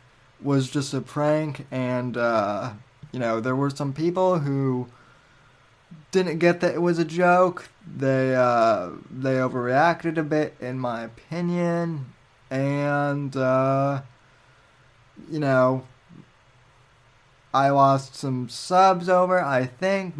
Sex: male